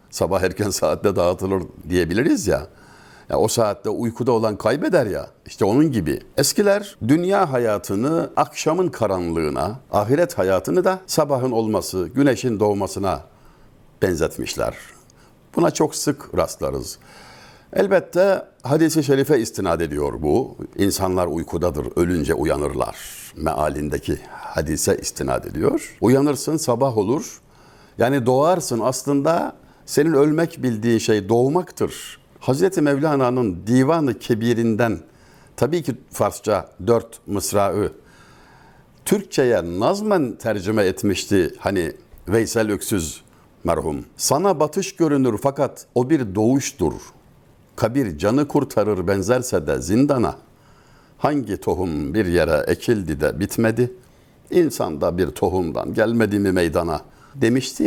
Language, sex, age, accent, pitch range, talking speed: Turkish, male, 60-79, native, 100-140 Hz, 105 wpm